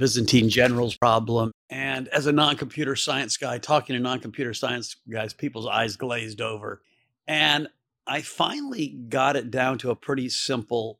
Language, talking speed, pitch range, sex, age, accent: English, 165 wpm, 120-145 Hz, male, 50-69, American